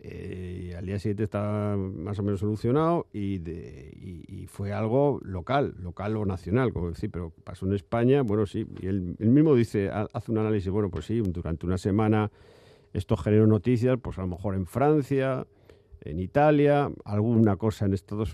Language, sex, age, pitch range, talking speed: Spanish, male, 50-69, 95-115 Hz, 185 wpm